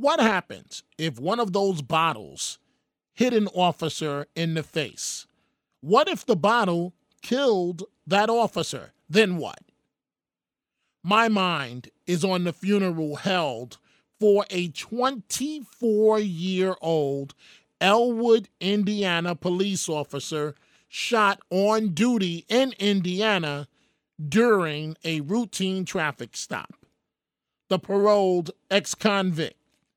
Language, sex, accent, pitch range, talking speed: English, male, American, 160-205 Hz, 100 wpm